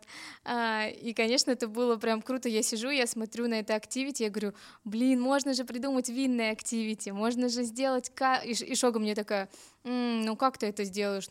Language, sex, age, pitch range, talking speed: Russian, female, 20-39, 215-255 Hz, 185 wpm